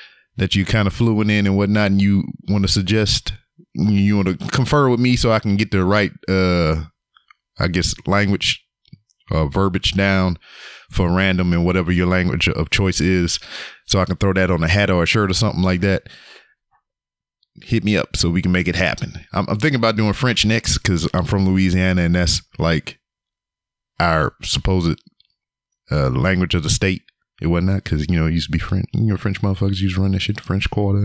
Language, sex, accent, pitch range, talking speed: English, male, American, 90-105 Hz, 205 wpm